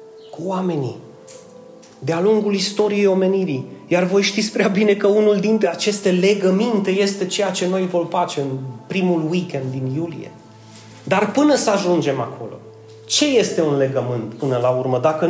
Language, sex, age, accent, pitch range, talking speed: Romanian, male, 30-49, native, 150-210 Hz, 155 wpm